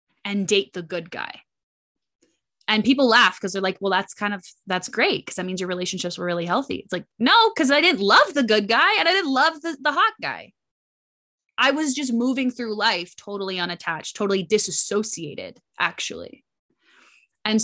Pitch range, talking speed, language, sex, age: 175-225 Hz, 185 wpm, English, female, 20-39